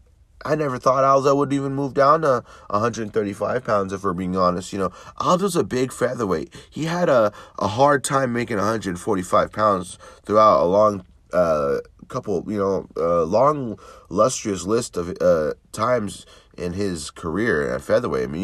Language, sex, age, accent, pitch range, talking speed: English, male, 30-49, American, 85-105 Hz, 170 wpm